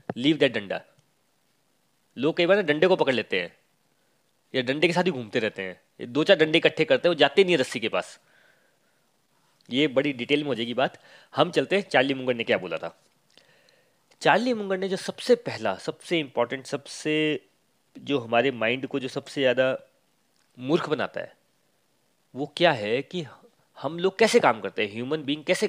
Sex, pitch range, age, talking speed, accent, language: male, 130-180 Hz, 30-49, 190 wpm, native, Hindi